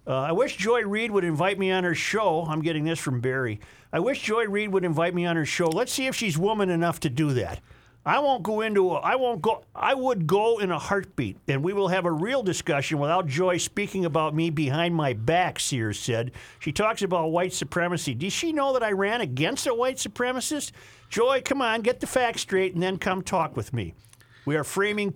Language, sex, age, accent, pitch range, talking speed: English, male, 50-69, American, 145-200 Hz, 230 wpm